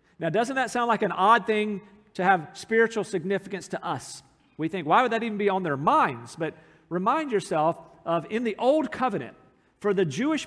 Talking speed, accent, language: 200 wpm, American, English